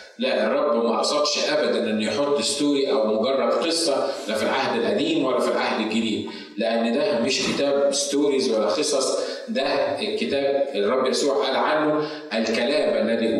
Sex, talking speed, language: male, 150 wpm, Arabic